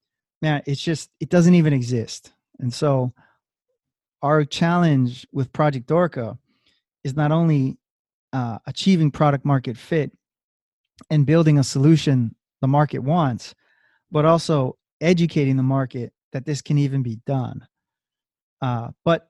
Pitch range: 130-160 Hz